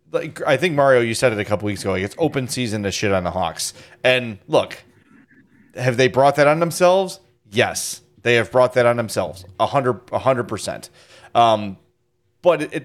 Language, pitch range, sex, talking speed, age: English, 110-150 Hz, male, 180 wpm, 30-49